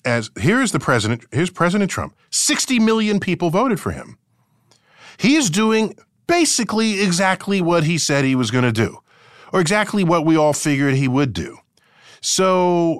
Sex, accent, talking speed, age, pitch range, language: male, American, 160 wpm, 40-59, 125-195 Hz, English